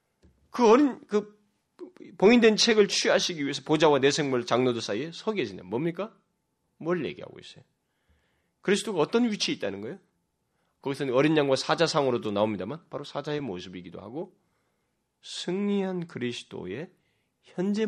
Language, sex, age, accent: Korean, male, 30-49, native